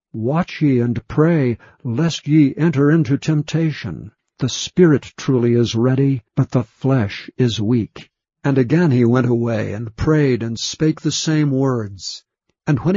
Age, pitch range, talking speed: 60-79, 120-155 Hz, 155 wpm